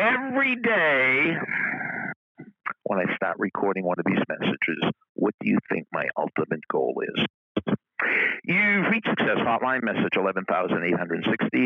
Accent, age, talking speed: American, 60-79, 125 wpm